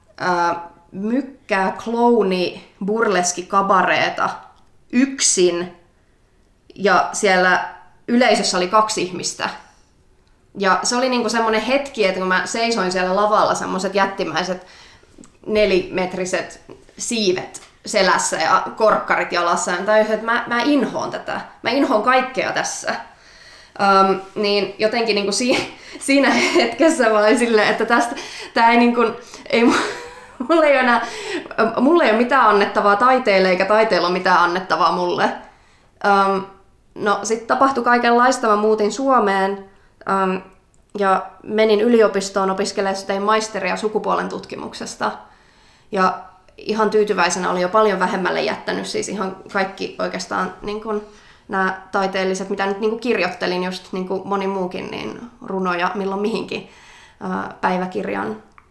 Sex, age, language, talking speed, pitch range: female, 20-39, Finnish, 115 wpm, 190-230 Hz